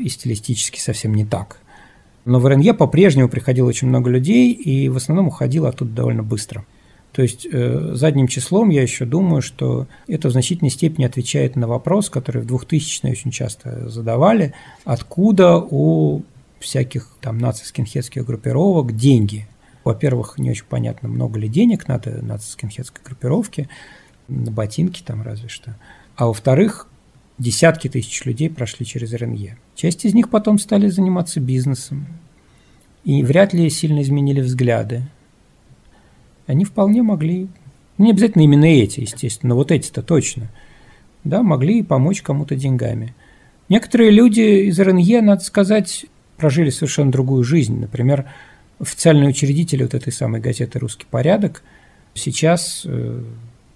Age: 50-69